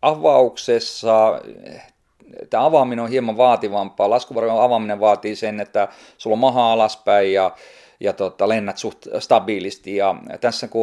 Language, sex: Finnish, male